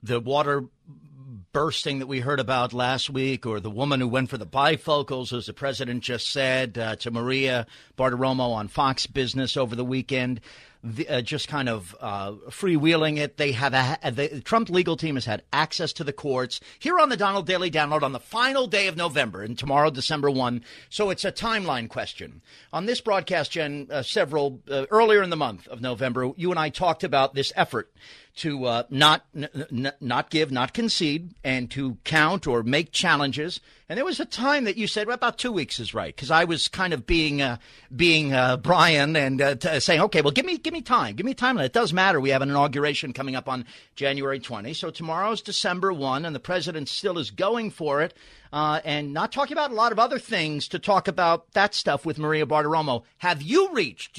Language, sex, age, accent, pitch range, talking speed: English, male, 40-59, American, 130-180 Hz, 210 wpm